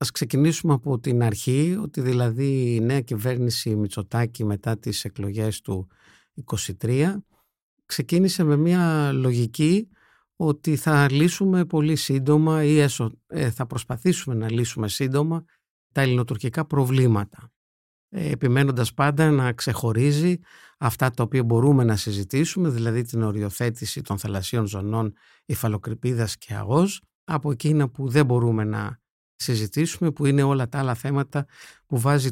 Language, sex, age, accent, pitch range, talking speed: Greek, male, 50-69, native, 120-155 Hz, 125 wpm